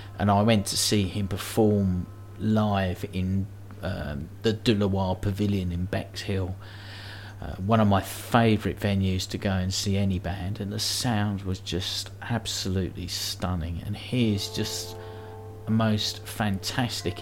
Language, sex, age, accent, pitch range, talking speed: English, male, 40-59, British, 95-110 Hz, 145 wpm